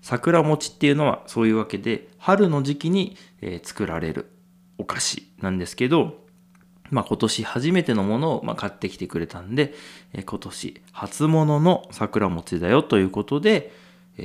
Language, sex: Japanese, male